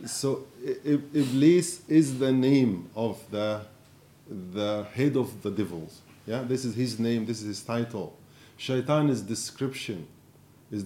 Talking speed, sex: 140 wpm, male